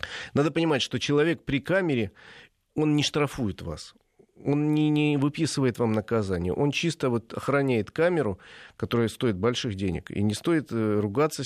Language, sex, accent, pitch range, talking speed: Russian, male, native, 105-135 Hz, 145 wpm